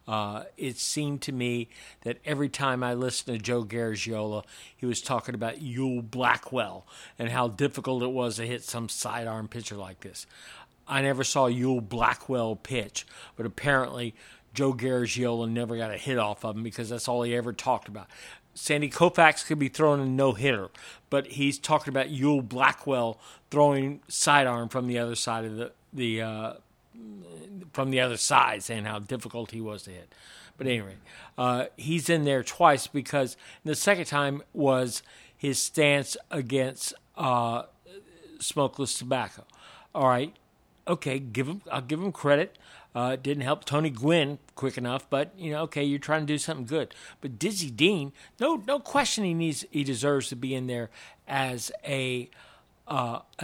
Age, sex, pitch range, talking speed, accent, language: 50-69, male, 120-145 Hz, 170 wpm, American, English